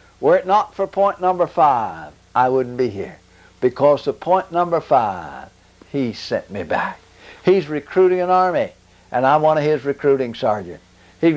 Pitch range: 105-160 Hz